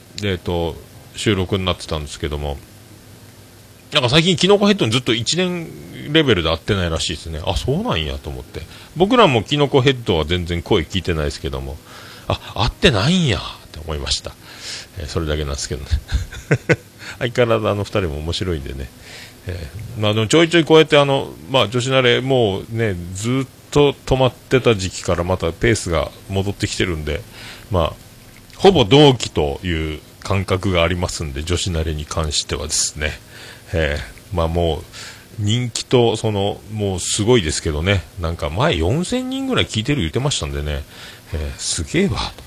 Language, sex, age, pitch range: Japanese, male, 40-59, 85-125 Hz